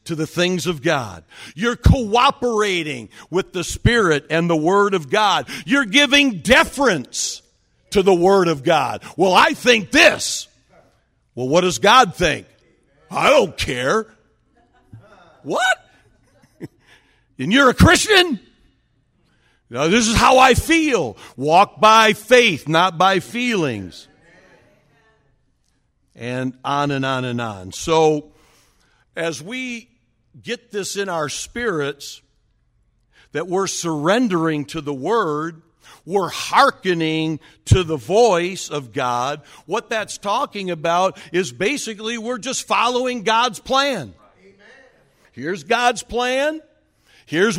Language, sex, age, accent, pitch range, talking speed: English, male, 50-69, American, 160-240 Hz, 120 wpm